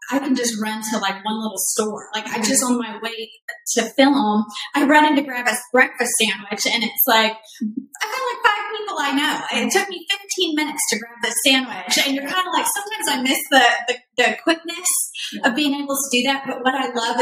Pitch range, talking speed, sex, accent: 225-275 Hz, 230 wpm, female, American